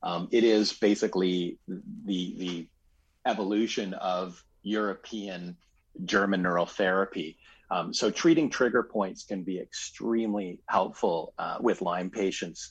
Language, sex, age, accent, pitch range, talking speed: English, male, 40-59, American, 90-105 Hz, 120 wpm